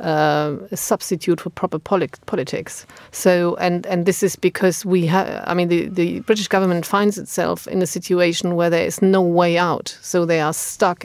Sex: female